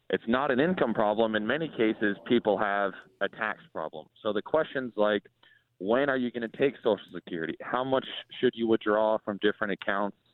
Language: English